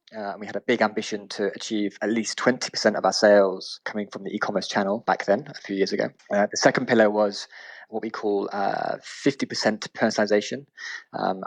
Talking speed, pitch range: 195 wpm, 95-110 Hz